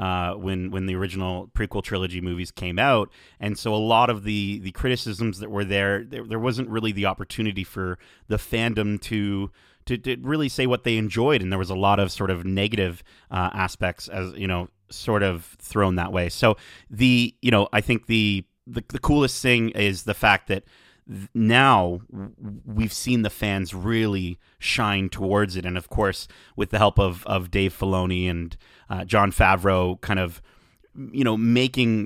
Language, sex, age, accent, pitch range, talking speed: English, male, 30-49, American, 95-115 Hz, 185 wpm